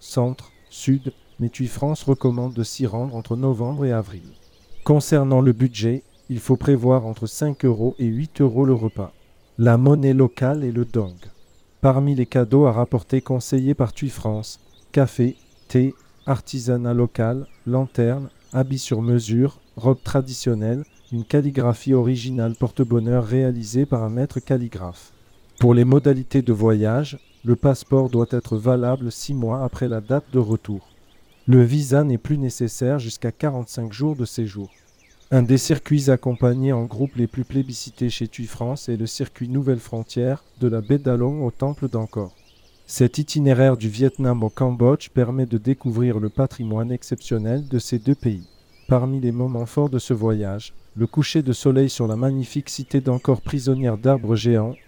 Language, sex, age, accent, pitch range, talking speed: French, male, 40-59, French, 115-135 Hz, 160 wpm